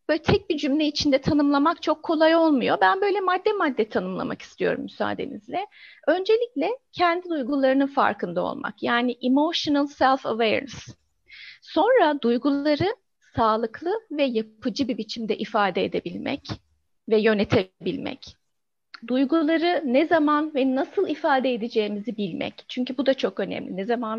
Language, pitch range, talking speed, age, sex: Turkish, 245-330 Hz, 125 wpm, 30-49, female